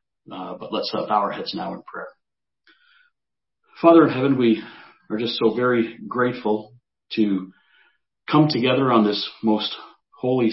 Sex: male